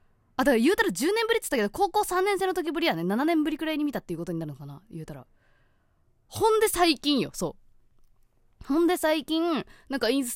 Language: Japanese